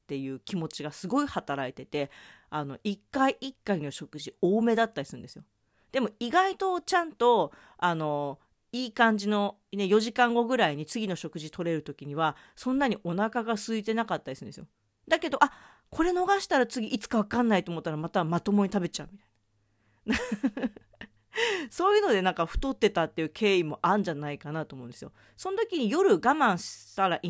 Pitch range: 155-240 Hz